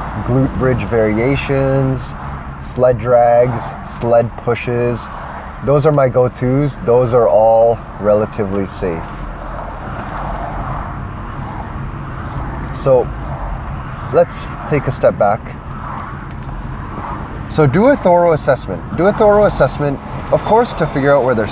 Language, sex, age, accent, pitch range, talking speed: English, male, 20-39, American, 105-135 Hz, 105 wpm